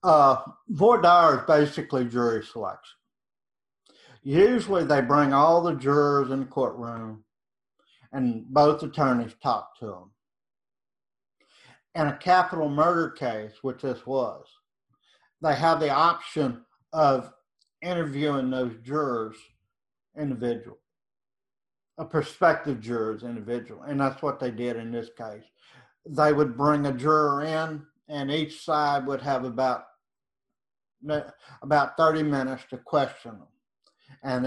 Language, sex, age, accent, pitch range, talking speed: English, male, 50-69, American, 125-150 Hz, 120 wpm